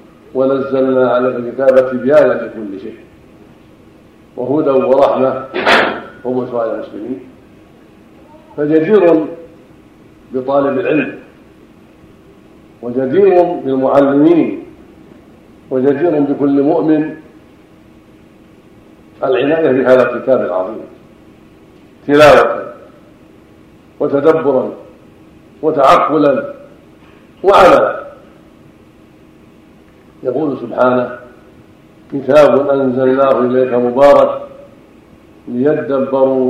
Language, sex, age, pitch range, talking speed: Arabic, male, 50-69, 125-140 Hz, 55 wpm